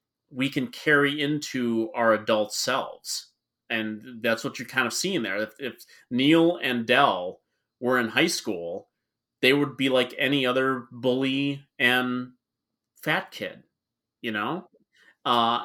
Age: 30-49